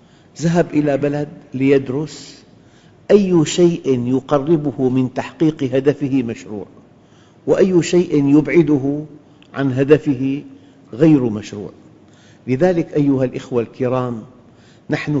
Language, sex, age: Arabic, male, 50-69